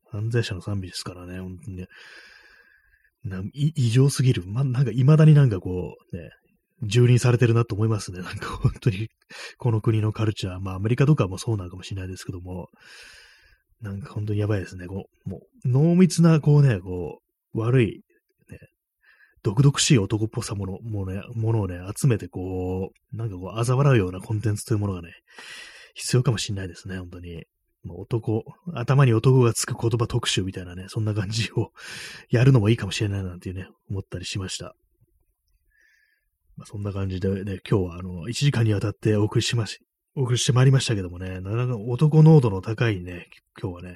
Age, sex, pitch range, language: 20-39, male, 95-125 Hz, Japanese